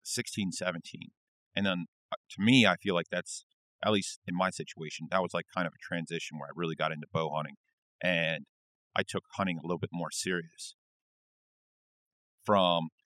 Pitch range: 80-95 Hz